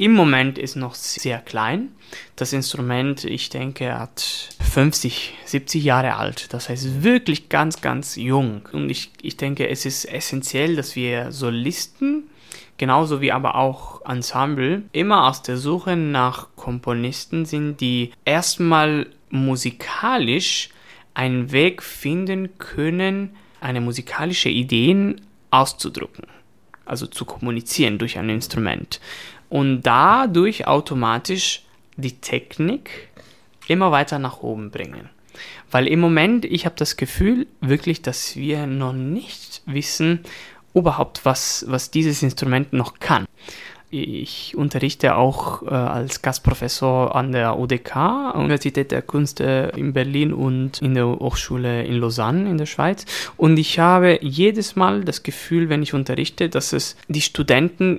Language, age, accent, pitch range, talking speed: German, 20-39, German, 125-160 Hz, 130 wpm